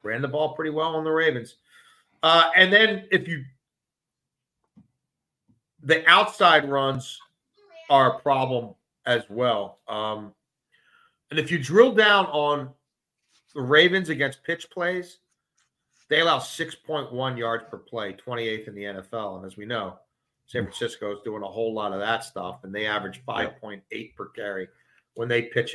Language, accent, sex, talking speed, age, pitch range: English, American, male, 155 wpm, 40-59, 115-155 Hz